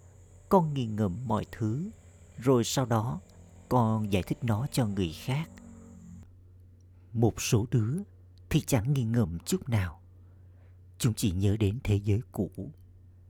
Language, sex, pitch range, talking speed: Vietnamese, male, 90-120 Hz, 140 wpm